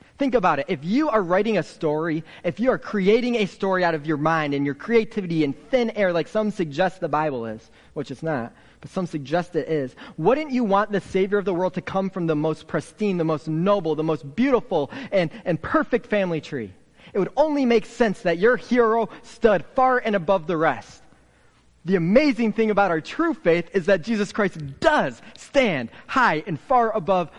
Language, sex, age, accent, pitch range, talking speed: English, male, 30-49, American, 150-215 Hz, 210 wpm